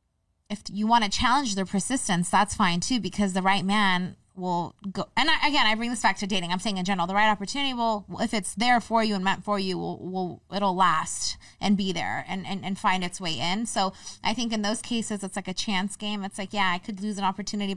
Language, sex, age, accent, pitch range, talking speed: English, female, 20-39, American, 180-215 Hz, 255 wpm